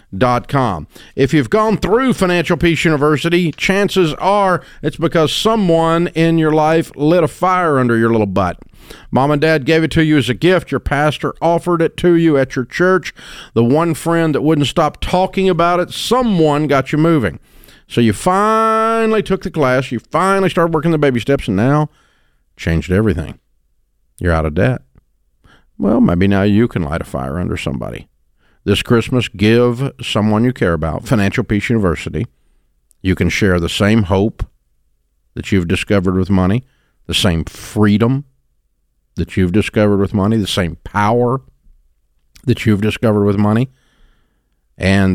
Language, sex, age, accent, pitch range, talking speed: English, male, 50-69, American, 95-155 Hz, 165 wpm